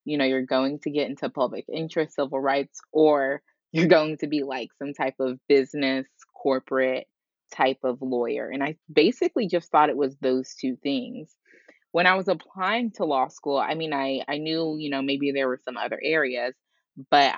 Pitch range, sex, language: 130-170 Hz, female, English